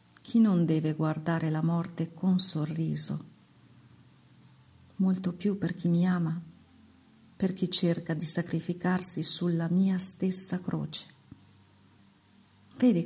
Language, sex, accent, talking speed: Italian, female, native, 110 wpm